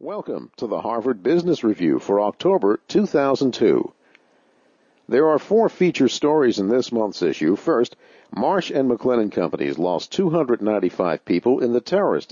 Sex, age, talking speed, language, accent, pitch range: male, 50-69, 140 wpm, English, American, 110-160 Hz